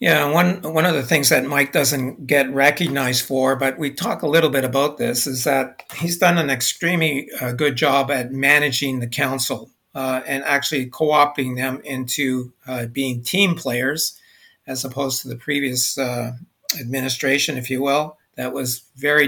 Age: 50-69